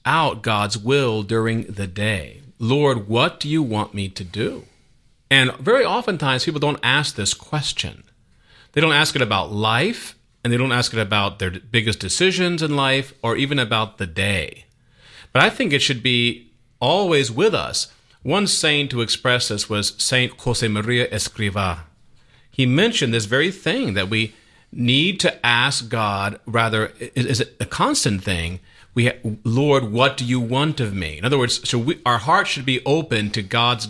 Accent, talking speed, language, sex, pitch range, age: American, 180 wpm, English, male, 100-130 Hz, 40-59